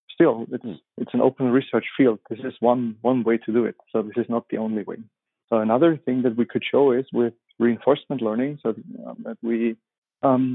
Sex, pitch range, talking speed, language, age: male, 115-130 Hz, 205 wpm, English, 30-49